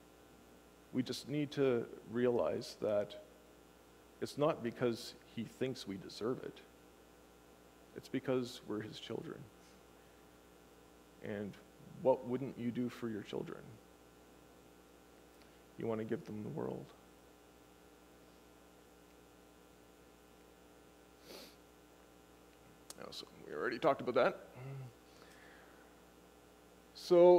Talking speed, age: 90 wpm, 40-59